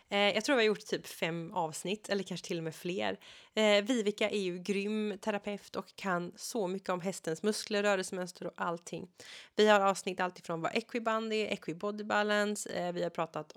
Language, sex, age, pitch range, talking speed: Swedish, female, 30-49, 175-220 Hz, 200 wpm